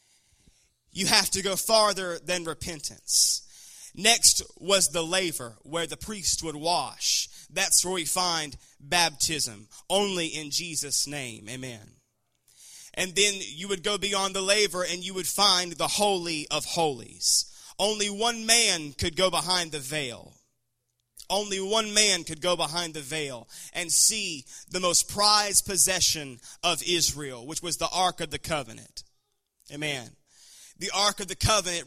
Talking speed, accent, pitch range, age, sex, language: 150 wpm, American, 150-190 Hz, 30-49, male, English